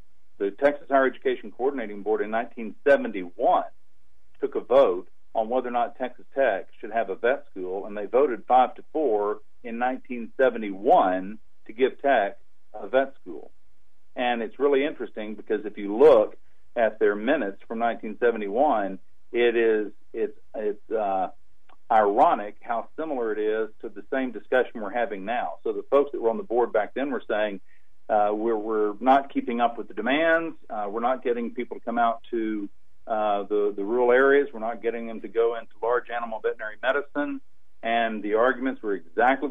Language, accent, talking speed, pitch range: English, American, 180 wpm, 110-145 Hz